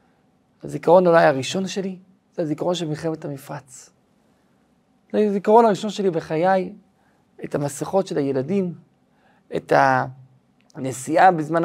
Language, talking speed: Hebrew, 105 wpm